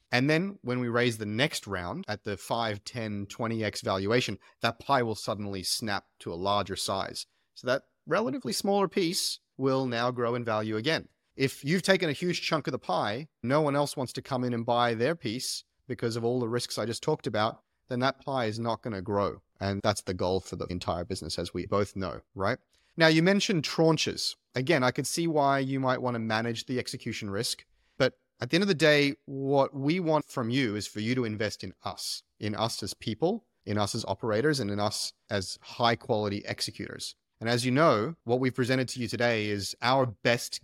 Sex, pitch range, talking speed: male, 105-135 Hz, 220 wpm